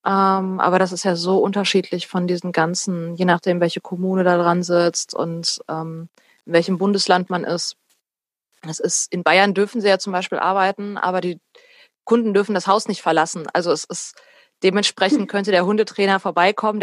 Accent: German